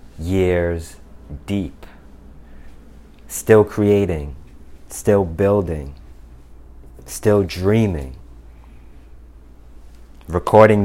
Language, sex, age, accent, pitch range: English, male, 20-39, American, 75-105 Hz